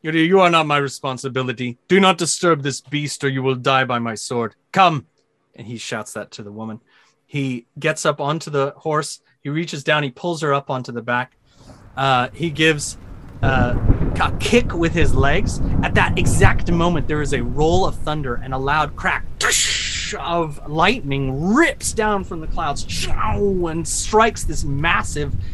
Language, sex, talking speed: English, male, 175 wpm